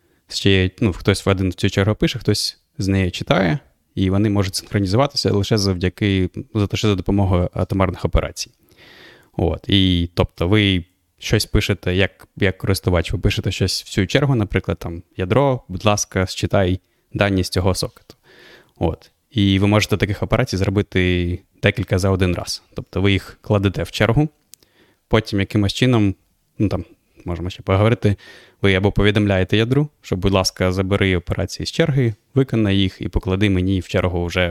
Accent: native